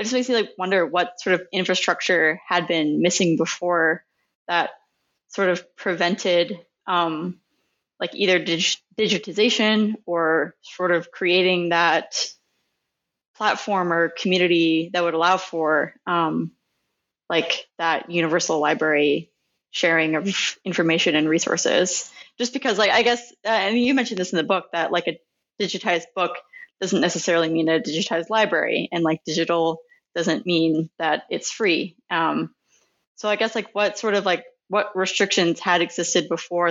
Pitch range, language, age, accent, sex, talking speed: 165-195 Hz, English, 20-39, American, female, 145 wpm